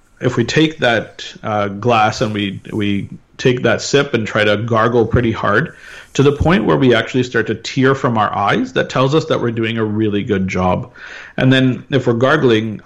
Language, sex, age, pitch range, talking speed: English, male, 30-49, 100-120 Hz, 210 wpm